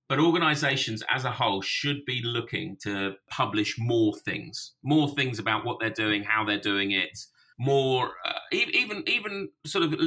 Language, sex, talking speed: English, male, 175 wpm